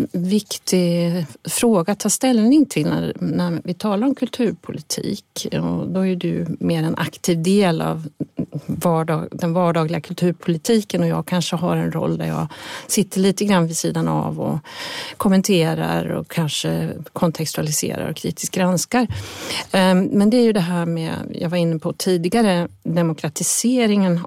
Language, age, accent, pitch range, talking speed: Swedish, 40-59, native, 165-205 Hz, 145 wpm